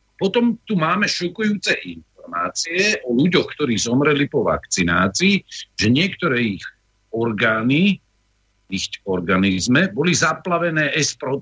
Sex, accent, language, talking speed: male, native, Czech, 110 wpm